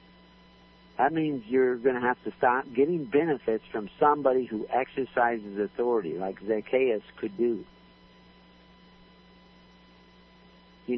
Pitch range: 105-125 Hz